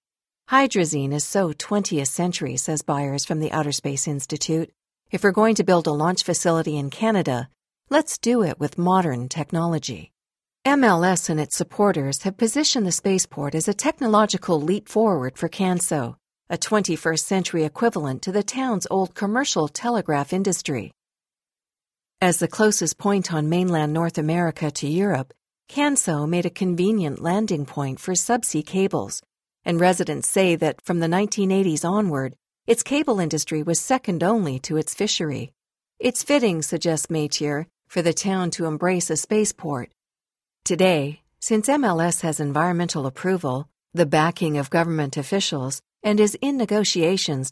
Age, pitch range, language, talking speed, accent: 50-69, 150-195 Hz, English, 145 wpm, American